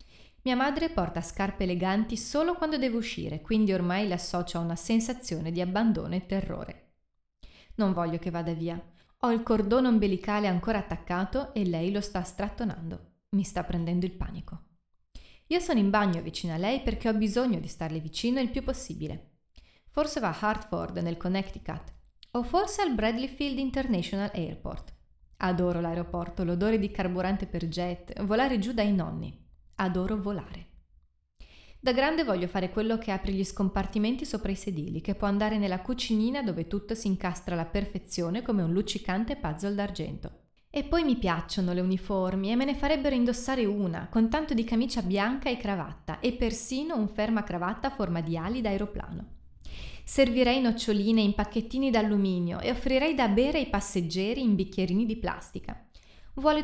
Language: Italian